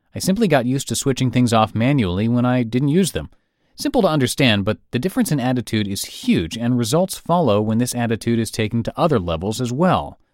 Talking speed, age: 215 wpm, 30-49